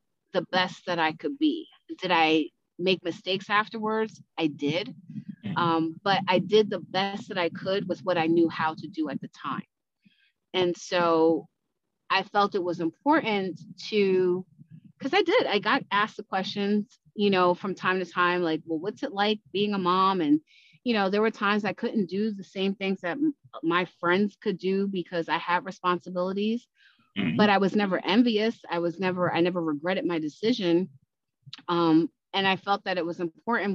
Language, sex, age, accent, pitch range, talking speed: English, female, 30-49, American, 175-205 Hz, 185 wpm